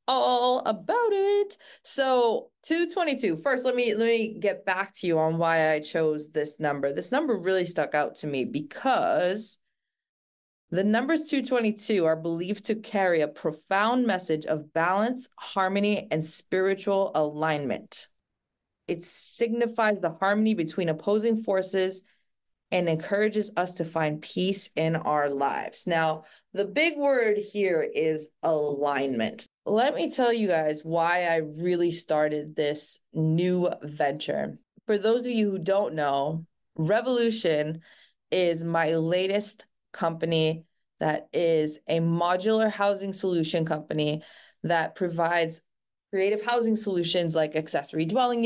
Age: 20-39